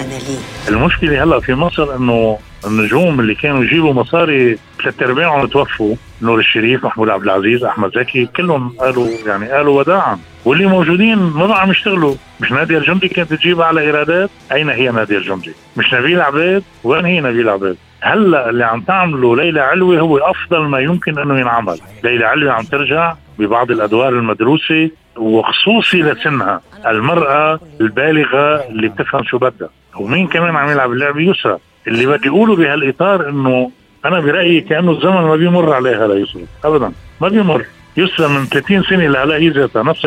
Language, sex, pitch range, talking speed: Arabic, male, 115-170 Hz, 155 wpm